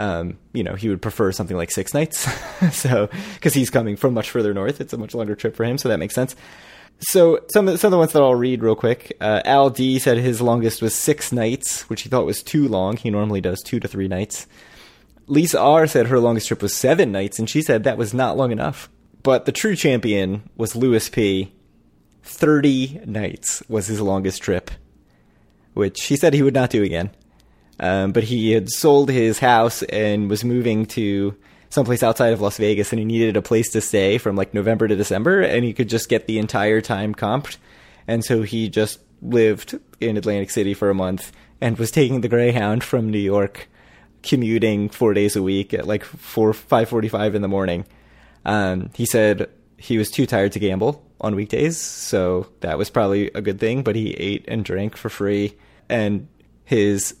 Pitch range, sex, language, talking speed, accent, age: 100-125 Hz, male, English, 205 wpm, American, 20-39